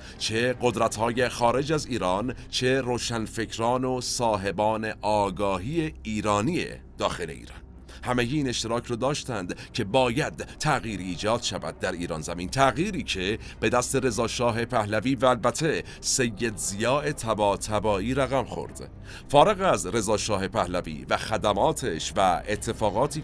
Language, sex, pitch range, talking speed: Persian, male, 100-125 Hz, 120 wpm